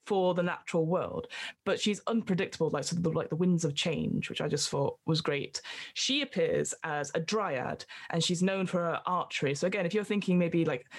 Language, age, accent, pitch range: English, 10-29, British, 165-190 Hz